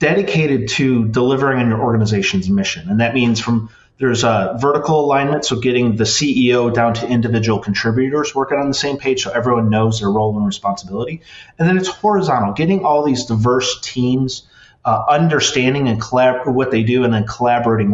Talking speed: 180 wpm